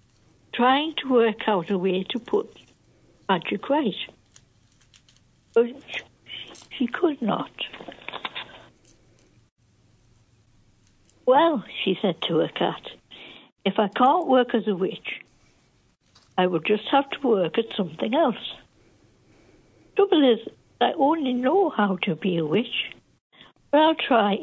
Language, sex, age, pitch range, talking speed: English, female, 60-79, 185-255 Hz, 125 wpm